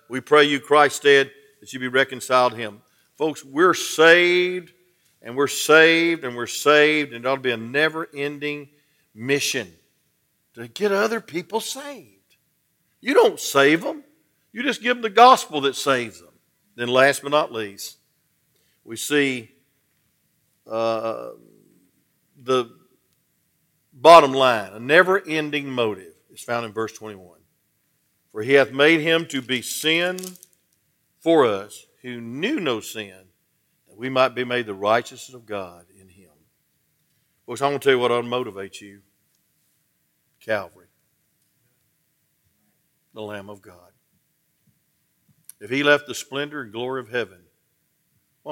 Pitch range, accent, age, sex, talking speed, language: 115-150 Hz, American, 50-69, male, 140 wpm, English